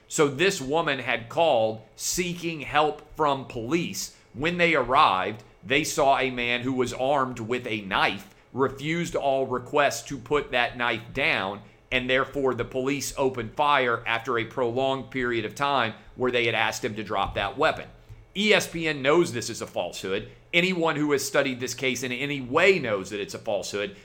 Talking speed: 175 wpm